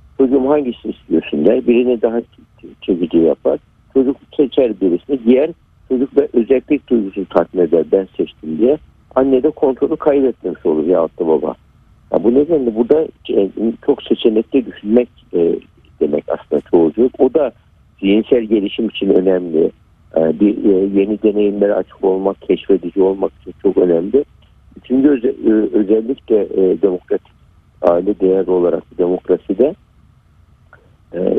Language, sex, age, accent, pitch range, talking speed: Turkish, male, 60-79, native, 100-135 Hz, 125 wpm